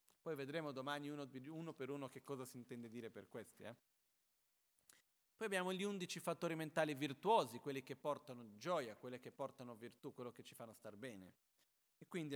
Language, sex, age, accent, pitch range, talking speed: Italian, male, 40-59, native, 125-160 Hz, 185 wpm